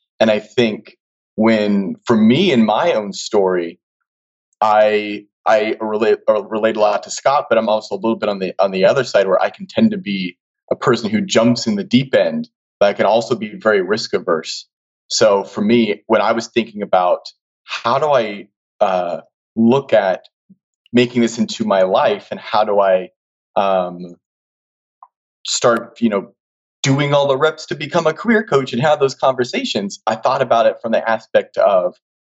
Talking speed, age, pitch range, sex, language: 190 wpm, 30-49, 100-155 Hz, male, English